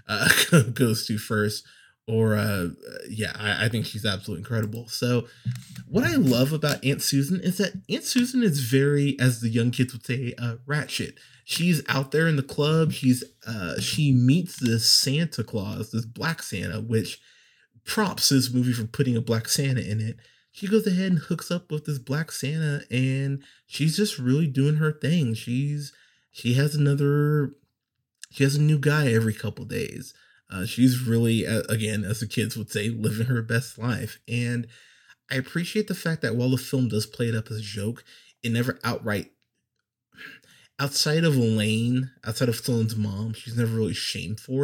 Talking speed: 180 wpm